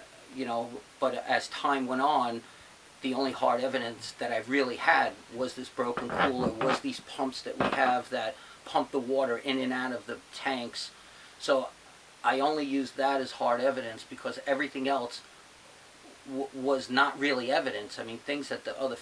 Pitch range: 125-140 Hz